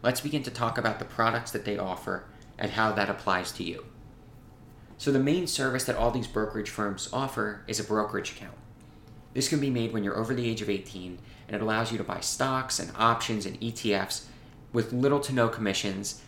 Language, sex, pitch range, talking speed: English, male, 105-125 Hz, 210 wpm